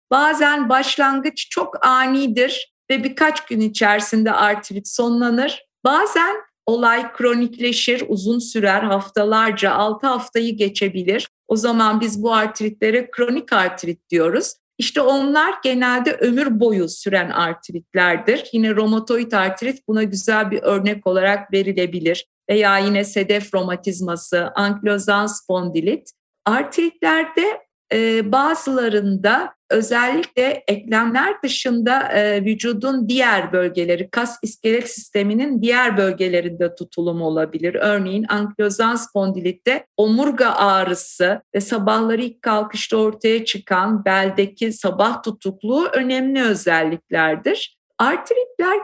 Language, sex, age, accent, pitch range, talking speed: Turkish, female, 50-69, native, 195-250 Hz, 100 wpm